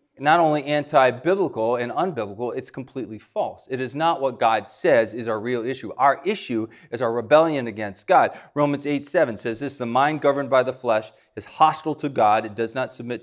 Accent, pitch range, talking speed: American, 120-155 Hz, 200 wpm